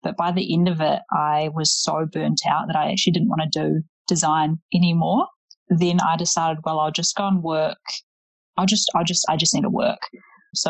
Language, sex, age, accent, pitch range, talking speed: English, female, 30-49, Australian, 155-200 Hz, 220 wpm